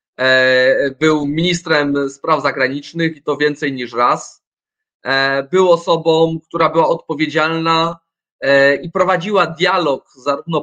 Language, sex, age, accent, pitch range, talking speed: Polish, male, 20-39, native, 150-195 Hz, 100 wpm